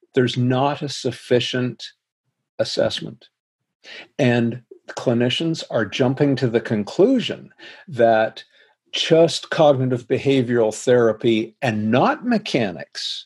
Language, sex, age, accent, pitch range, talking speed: English, male, 50-69, American, 115-145 Hz, 90 wpm